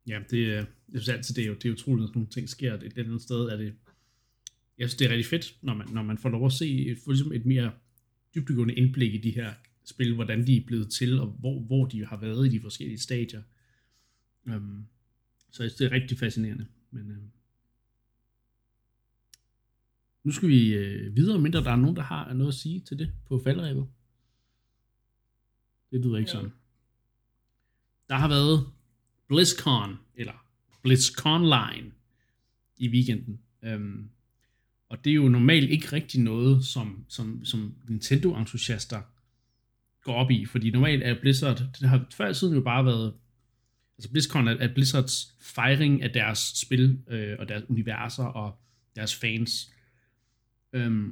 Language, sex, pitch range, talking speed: Danish, male, 115-130 Hz, 165 wpm